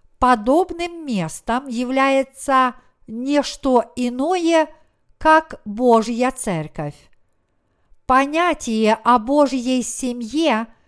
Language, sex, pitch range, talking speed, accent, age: Russian, female, 210-300 Hz, 70 wpm, native, 50-69